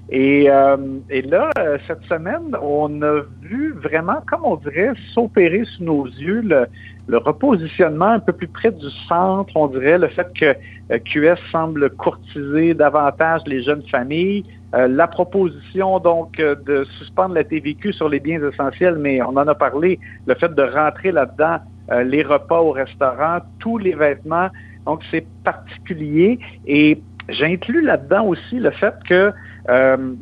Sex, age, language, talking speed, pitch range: male, 50-69, French, 155 wpm, 125-165 Hz